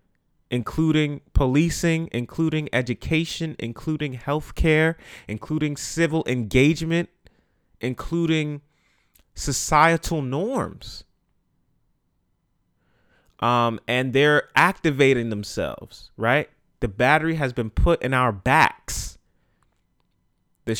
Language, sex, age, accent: English, male, 30-49, American